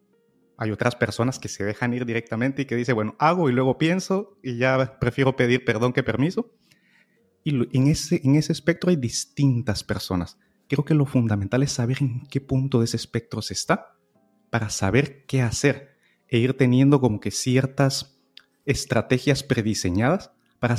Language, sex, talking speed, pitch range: Spanish, male, 170 wpm, 110-140 Hz